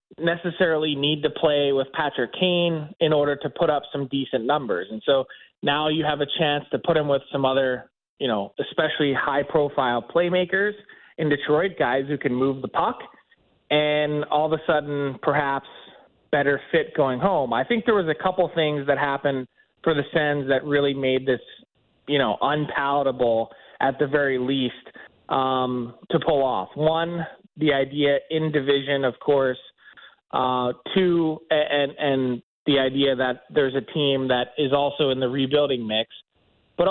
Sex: male